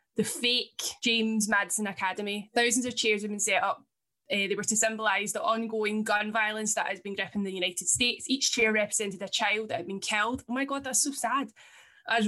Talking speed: 215 wpm